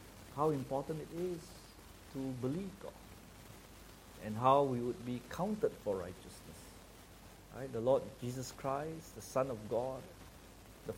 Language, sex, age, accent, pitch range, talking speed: English, male, 50-69, Malaysian, 95-140 Hz, 135 wpm